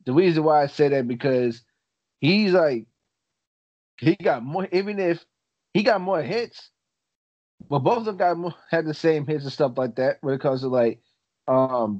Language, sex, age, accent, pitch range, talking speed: English, male, 20-39, American, 120-155 Hz, 180 wpm